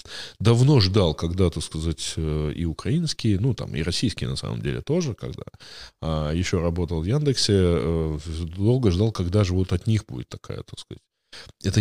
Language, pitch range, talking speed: Russian, 80-105 Hz, 170 wpm